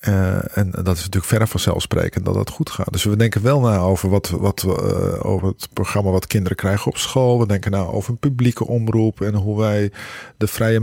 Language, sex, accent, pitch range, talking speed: Dutch, male, Dutch, 95-120 Hz, 225 wpm